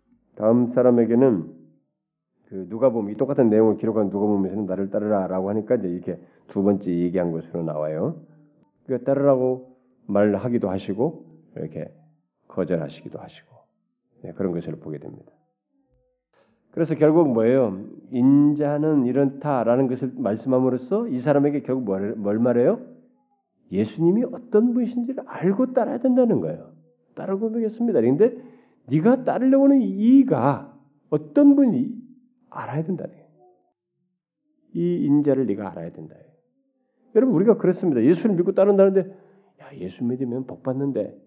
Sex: male